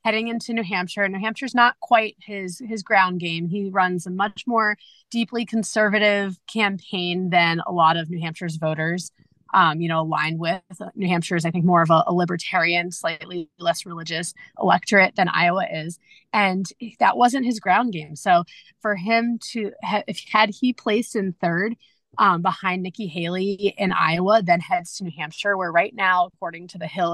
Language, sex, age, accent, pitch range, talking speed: English, female, 30-49, American, 175-215 Hz, 180 wpm